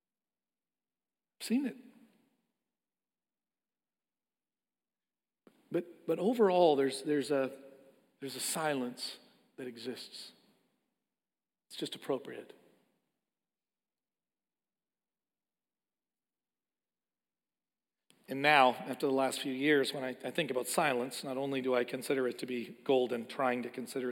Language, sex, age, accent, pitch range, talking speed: English, male, 40-59, American, 135-190 Hz, 100 wpm